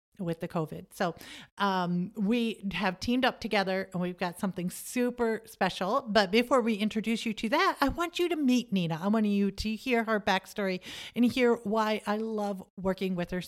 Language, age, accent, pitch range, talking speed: English, 40-59, American, 185-225 Hz, 195 wpm